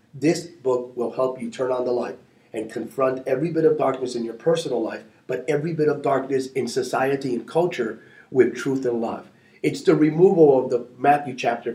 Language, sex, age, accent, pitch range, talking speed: English, male, 30-49, American, 120-155 Hz, 200 wpm